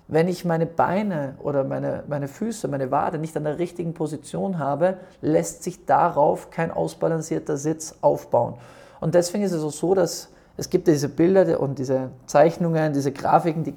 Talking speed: 175 wpm